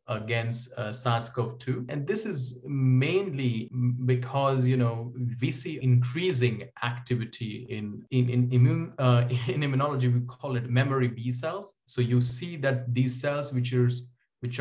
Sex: male